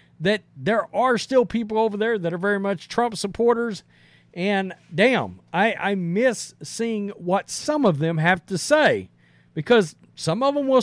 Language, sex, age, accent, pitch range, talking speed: English, male, 40-59, American, 155-230 Hz, 170 wpm